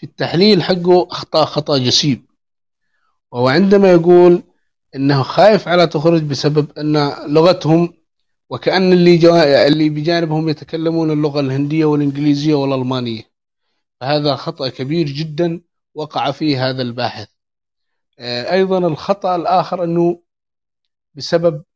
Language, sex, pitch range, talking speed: English, male, 140-175 Hz, 110 wpm